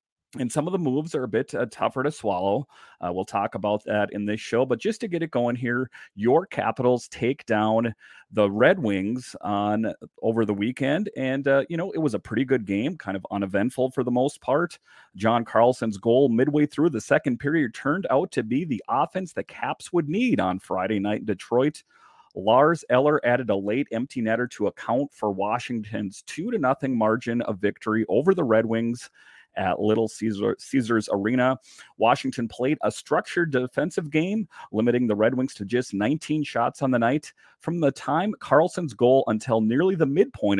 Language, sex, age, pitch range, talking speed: English, male, 40-59, 105-135 Hz, 190 wpm